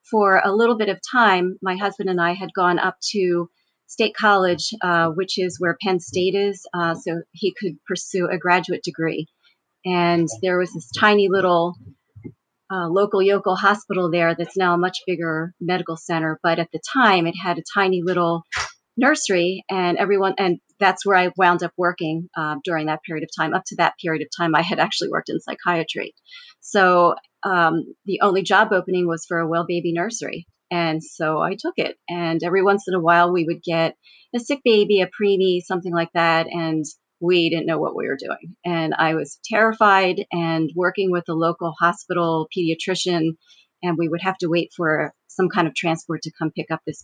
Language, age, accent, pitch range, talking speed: English, 40-59, American, 165-190 Hz, 200 wpm